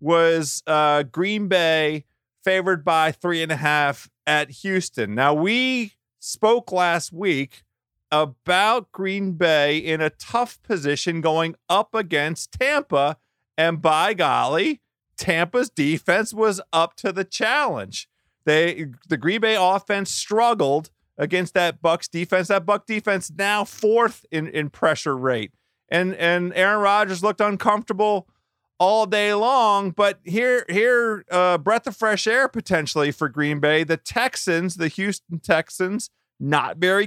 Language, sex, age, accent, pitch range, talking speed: English, male, 40-59, American, 155-210 Hz, 140 wpm